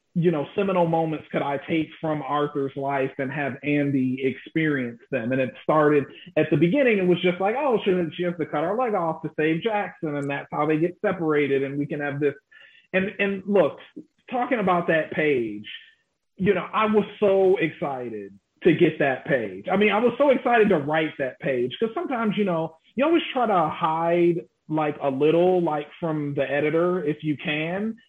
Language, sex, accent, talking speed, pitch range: English, male, American, 200 wpm, 145-185 Hz